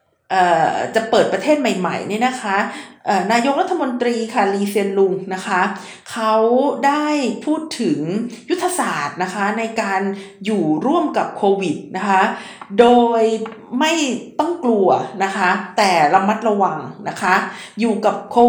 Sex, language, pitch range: female, Thai, 195-255 Hz